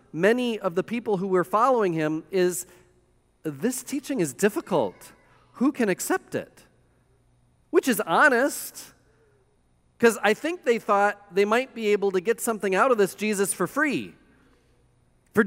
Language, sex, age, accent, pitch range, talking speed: English, male, 40-59, American, 175-225 Hz, 150 wpm